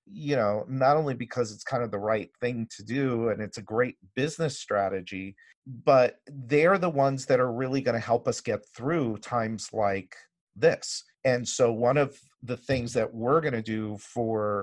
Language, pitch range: English, 110-135 Hz